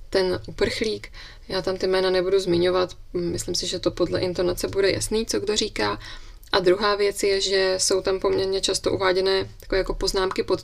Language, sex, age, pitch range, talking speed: Czech, female, 20-39, 180-200 Hz, 185 wpm